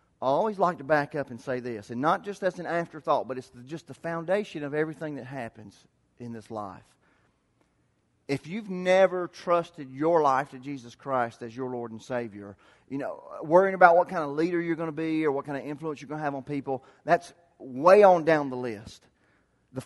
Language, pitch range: English, 125-165 Hz